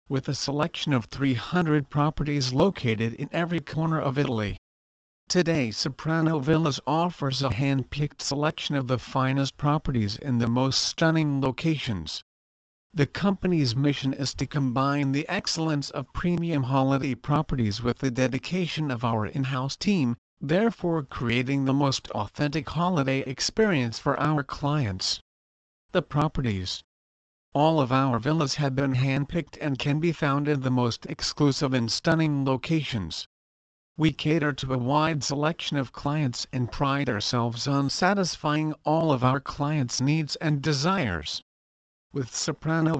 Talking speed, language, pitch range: 140 wpm, English, 125-155 Hz